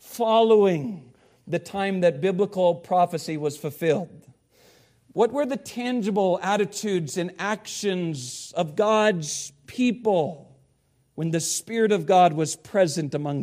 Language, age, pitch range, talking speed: English, 50-69, 145-205 Hz, 115 wpm